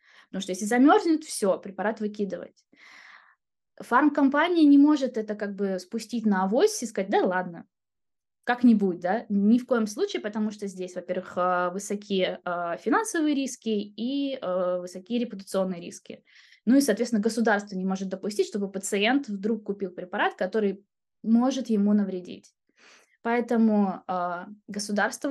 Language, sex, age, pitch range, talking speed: Russian, female, 20-39, 190-240 Hz, 130 wpm